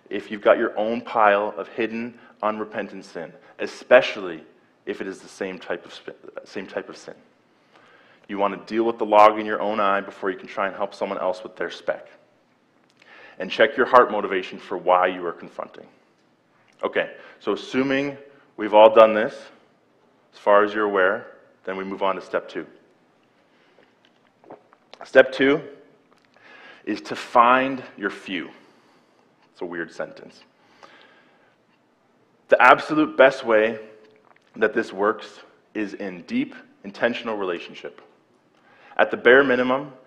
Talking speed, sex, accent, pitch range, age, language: 150 wpm, male, American, 100-115 Hz, 30-49, English